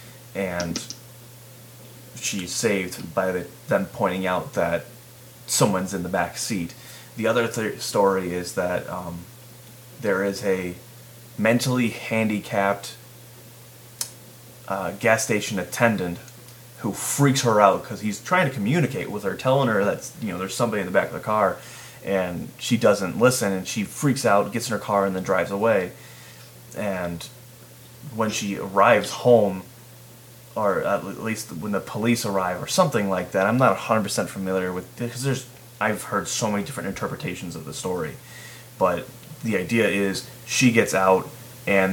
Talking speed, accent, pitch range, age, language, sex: 155 wpm, American, 100-125 Hz, 30-49, English, male